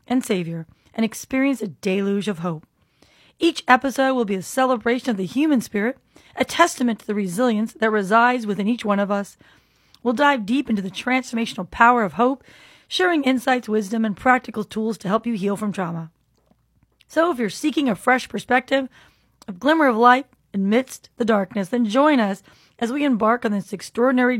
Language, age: English, 30-49